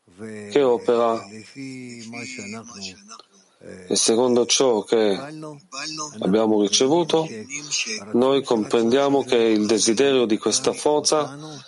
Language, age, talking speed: Italian, 40-59, 80 wpm